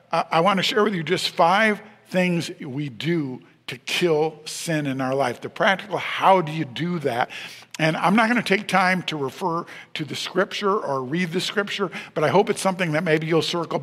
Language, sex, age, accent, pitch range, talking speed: English, male, 50-69, American, 150-185 Hz, 205 wpm